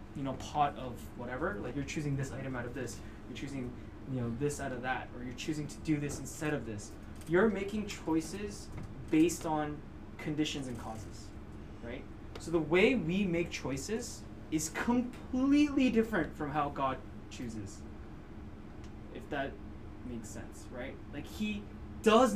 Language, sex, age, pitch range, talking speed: English, male, 20-39, 110-180 Hz, 160 wpm